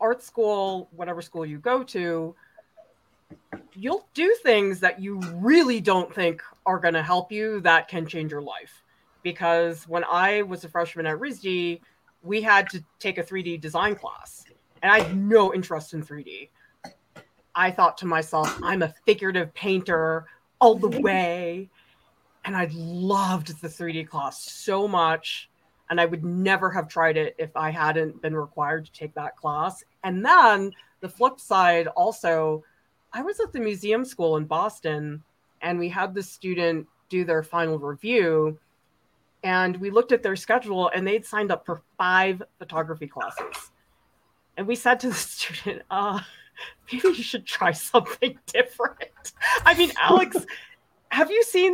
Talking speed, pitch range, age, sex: 160 wpm, 165-225 Hz, 30-49, female